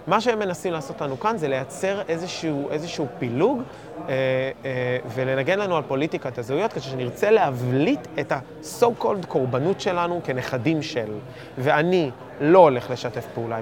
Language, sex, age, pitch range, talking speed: Hebrew, male, 20-39, 130-170 Hz, 135 wpm